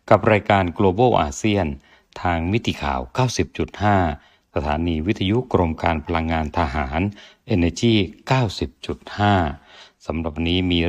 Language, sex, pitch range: Thai, male, 85-110 Hz